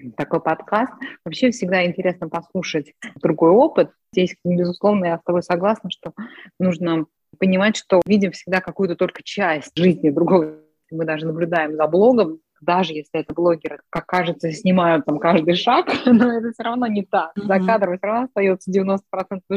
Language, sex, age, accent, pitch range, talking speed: Russian, female, 20-39, native, 180-220 Hz, 155 wpm